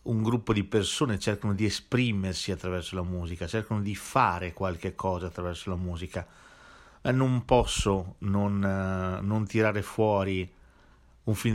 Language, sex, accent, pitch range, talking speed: Italian, male, native, 90-120 Hz, 135 wpm